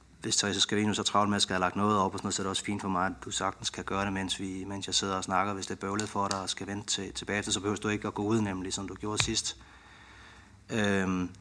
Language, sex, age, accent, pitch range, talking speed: Danish, male, 30-49, native, 95-110 Hz, 325 wpm